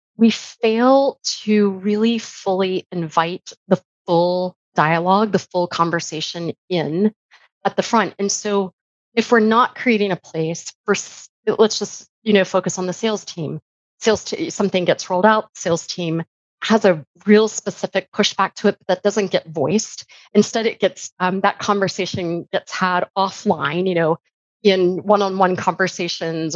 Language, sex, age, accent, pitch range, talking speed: English, female, 30-49, American, 180-210 Hz, 155 wpm